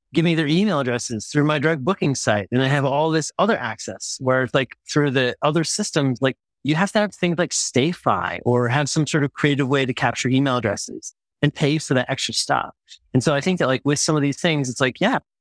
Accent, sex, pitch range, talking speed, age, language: American, male, 135-195 Hz, 245 wpm, 30-49, English